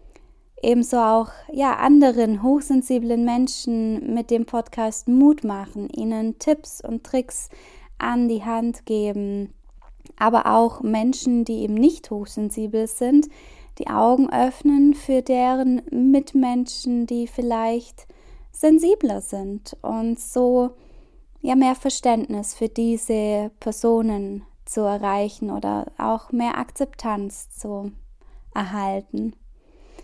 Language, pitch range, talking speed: German, 220-260 Hz, 100 wpm